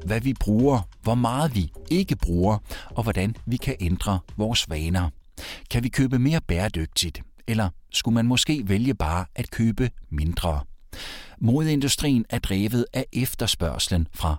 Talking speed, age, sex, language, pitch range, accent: 145 wpm, 60-79, male, Danish, 85-125 Hz, native